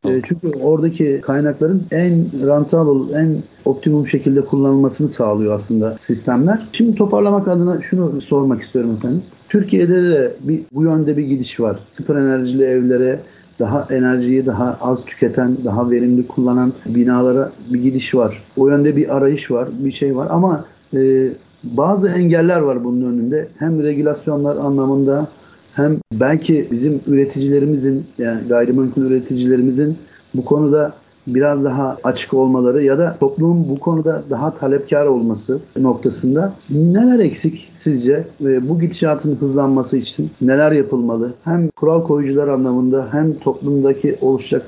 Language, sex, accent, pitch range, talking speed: Turkish, male, native, 130-155 Hz, 130 wpm